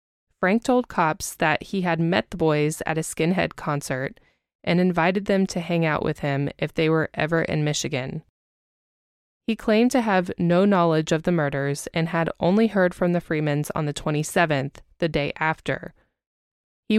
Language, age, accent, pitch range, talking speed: English, 20-39, American, 155-195 Hz, 175 wpm